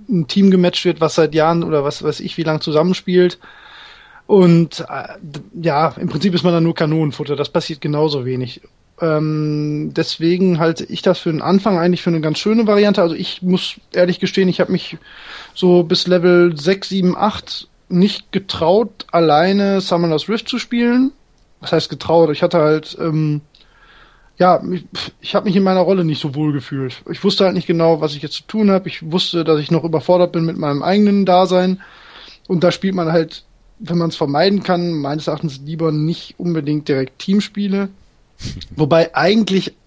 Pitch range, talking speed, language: 155-190 Hz, 185 wpm, German